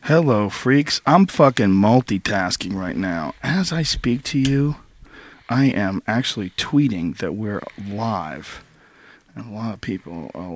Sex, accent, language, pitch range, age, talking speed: male, American, English, 110-145 Hz, 40-59, 140 wpm